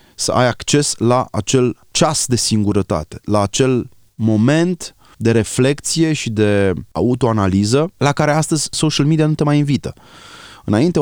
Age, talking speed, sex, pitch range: 30-49, 140 wpm, male, 95-130 Hz